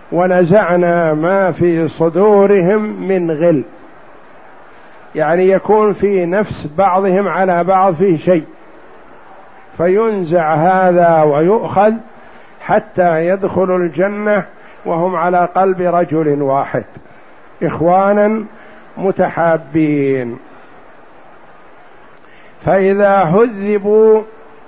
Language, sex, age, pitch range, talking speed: Arabic, male, 50-69, 170-195 Hz, 75 wpm